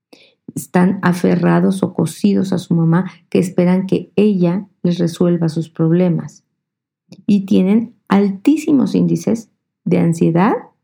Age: 40-59